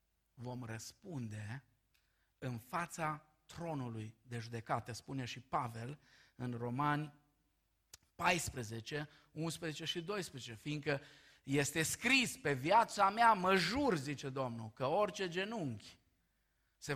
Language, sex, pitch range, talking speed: Romanian, male, 110-150 Hz, 105 wpm